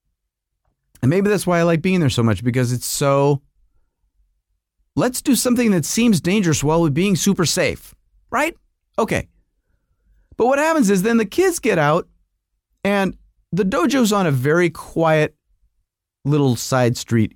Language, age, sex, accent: English, 30-49, male, American